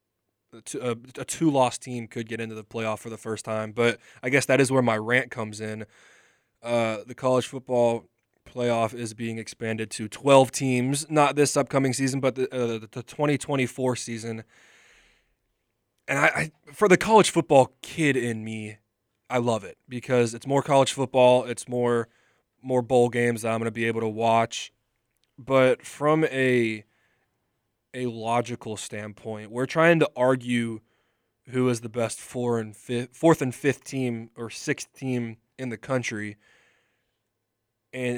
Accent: American